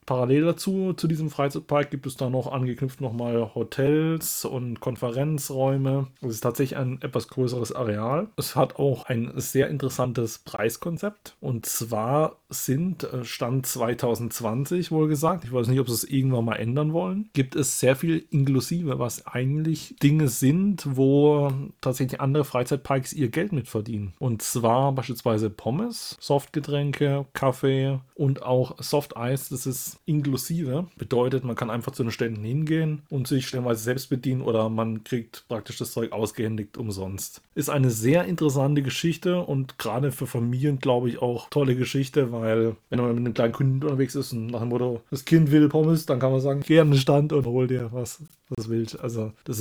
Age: 30-49